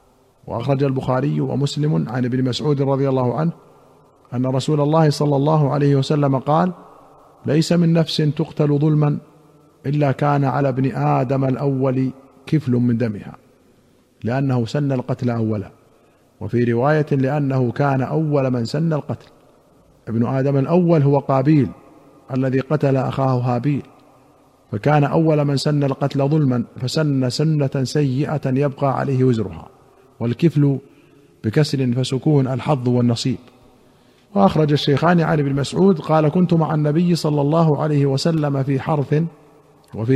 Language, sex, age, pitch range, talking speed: Arabic, male, 50-69, 130-155 Hz, 125 wpm